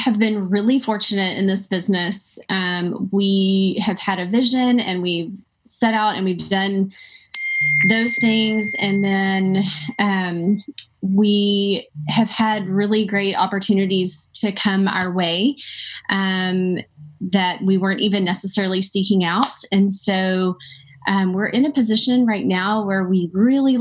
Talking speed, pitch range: 140 wpm, 185-215 Hz